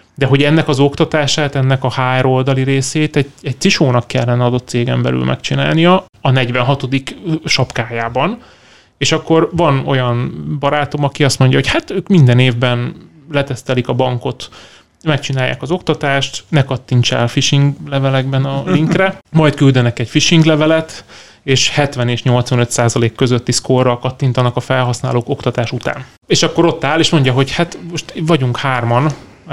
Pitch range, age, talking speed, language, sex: 125-150 Hz, 30-49, 150 wpm, Hungarian, male